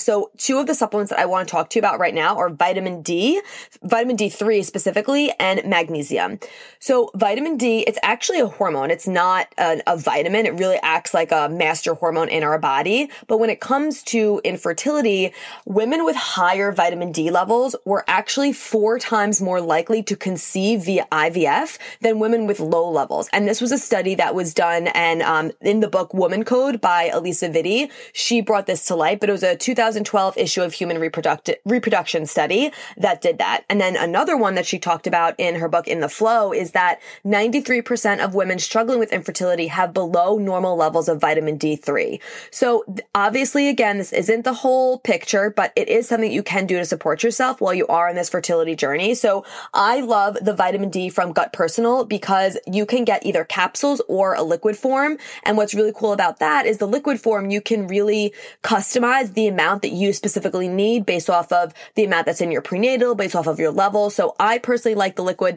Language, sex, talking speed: English, female, 205 wpm